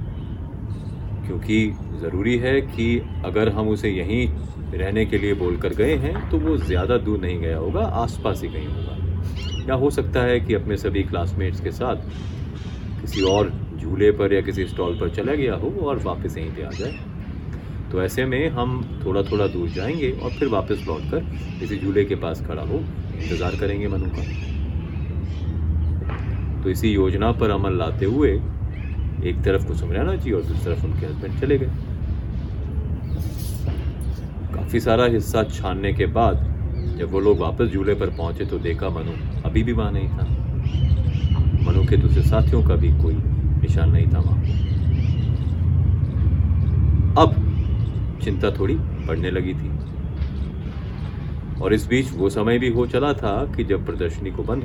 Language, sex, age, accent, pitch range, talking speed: Hindi, male, 30-49, native, 85-105 Hz, 160 wpm